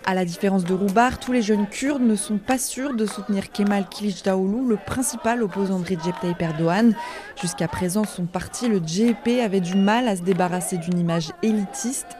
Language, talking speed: French, 195 wpm